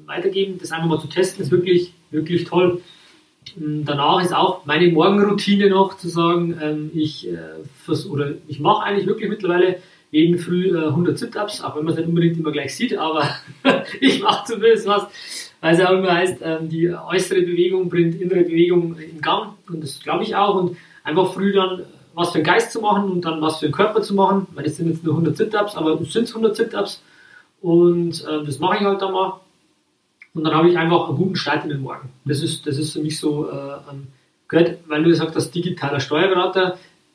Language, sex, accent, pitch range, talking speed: German, male, German, 150-180 Hz, 200 wpm